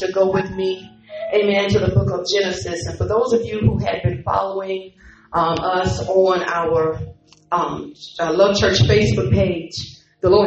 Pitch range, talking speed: 175-245 Hz, 180 wpm